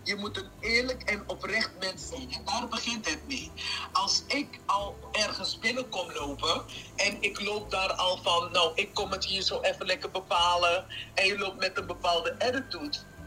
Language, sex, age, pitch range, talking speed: Dutch, male, 50-69, 175-245 Hz, 185 wpm